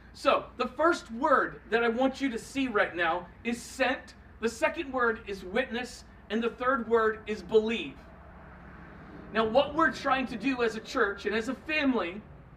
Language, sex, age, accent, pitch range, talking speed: English, male, 40-59, American, 215-265 Hz, 180 wpm